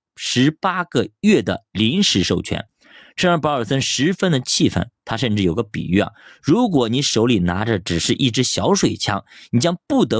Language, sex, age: Chinese, male, 20-39